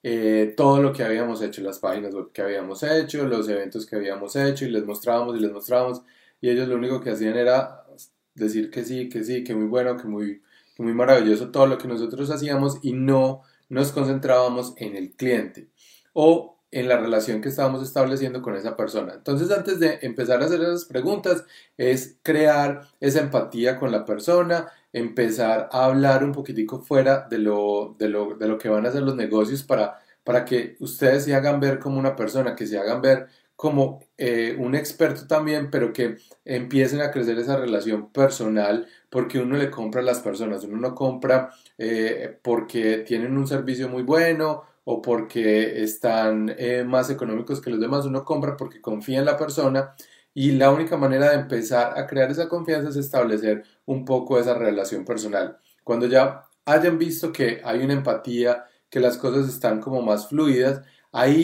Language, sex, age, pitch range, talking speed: Spanish, male, 20-39, 115-140 Hz, 185 wpm